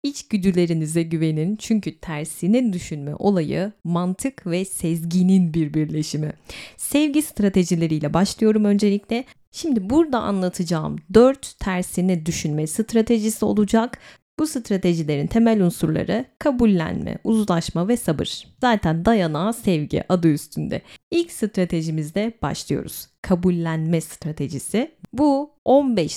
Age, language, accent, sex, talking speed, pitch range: 30-49, Turkish, native, female, 100 wpm, 165-230 Hz